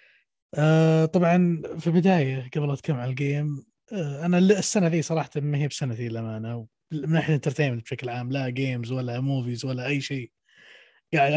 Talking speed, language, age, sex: 160 wpm, Arabic, 20-39, male